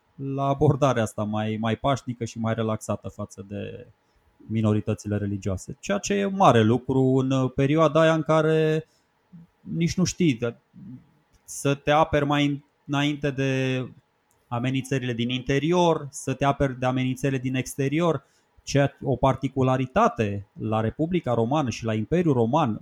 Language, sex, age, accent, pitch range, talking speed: Romanian, male, 20-39, native, 115-150 Hz, 140 wpm